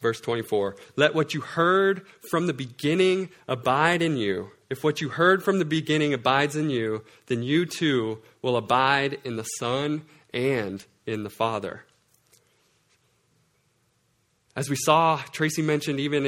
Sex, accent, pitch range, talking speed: male, American, 130-155 Hz, 145 wpm